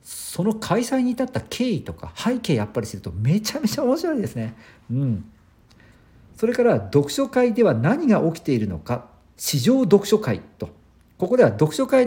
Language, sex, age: Japanese, male, 50-69